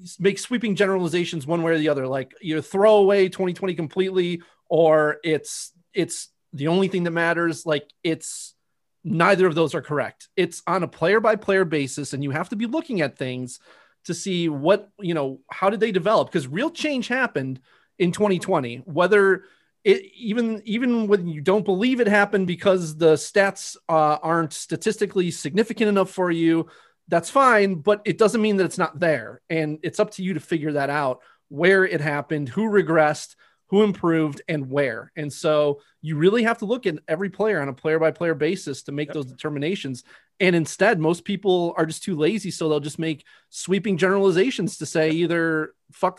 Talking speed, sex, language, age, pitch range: 190 wpm, male, English, 30-49, 155-195 Hz